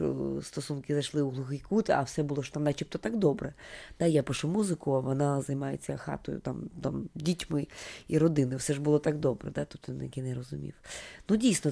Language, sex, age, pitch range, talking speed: Ukrainian, female, 20-39, 155-205 Hz, 185 wpm